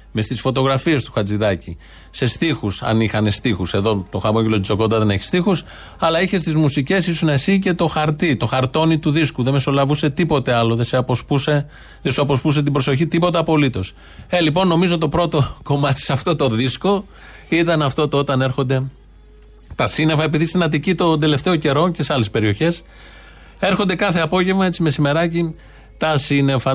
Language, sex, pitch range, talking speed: Greek, male, 125-165 Hz, 175 wpm